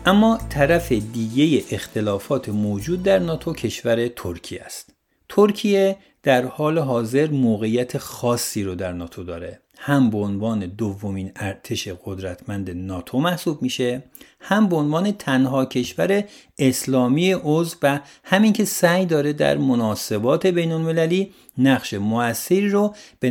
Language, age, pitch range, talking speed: Persian, 50-69, 110-160 Hz, 125 wpm